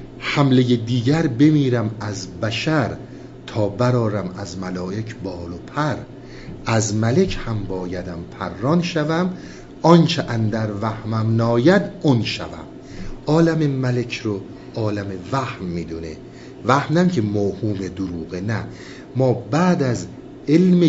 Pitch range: 105-135 Hz